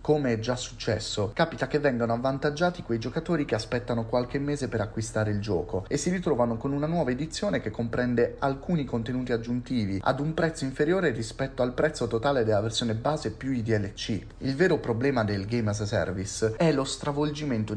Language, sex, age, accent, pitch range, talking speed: Italian, male, 30-49, native, 110-140 Hz, 185 wpm